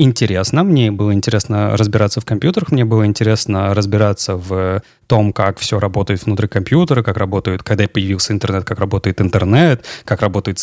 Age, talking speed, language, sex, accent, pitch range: 20-39, 160 wpm, Russian, male, native, 100-135 Hz